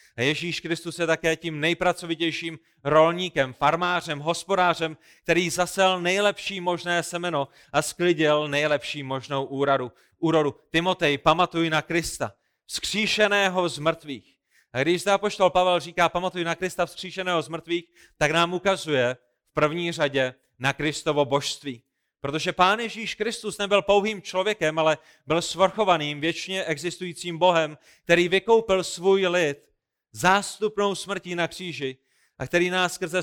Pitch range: 150-180 Hz